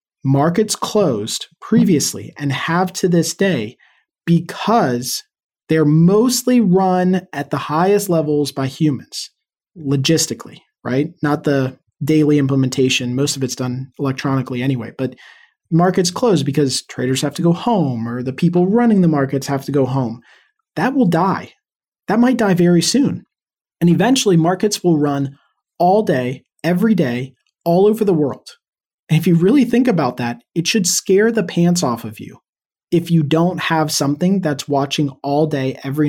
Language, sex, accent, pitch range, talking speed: English, male, American, 135-185 Hz, 160 wpm